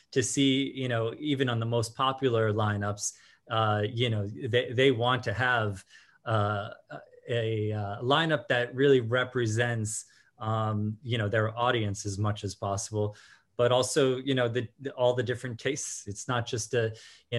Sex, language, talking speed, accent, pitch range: male, English, 170 wpm, American, 110-125 Hz